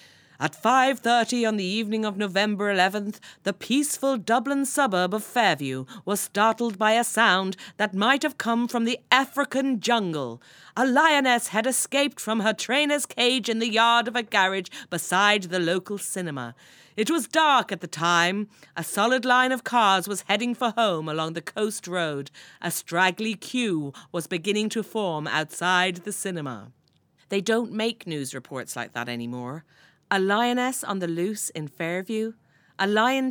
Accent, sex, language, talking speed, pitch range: British, female, English, 165 wpm, 165-230 Hz